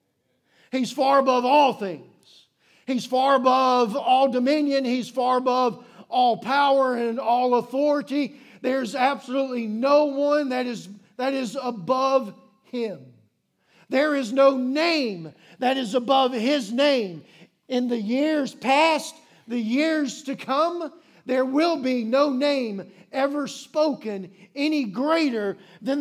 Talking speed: 125 wpm